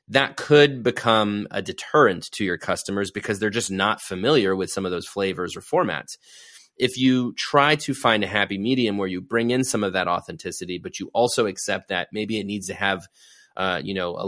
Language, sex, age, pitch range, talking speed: English, male, 30-49, 100-130 Hz, 210 wpm